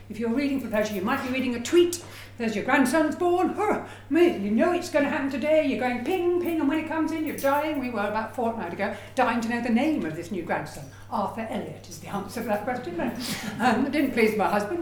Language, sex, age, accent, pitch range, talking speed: English, female, 60-79, British, 205-265 Hz, 260 wpm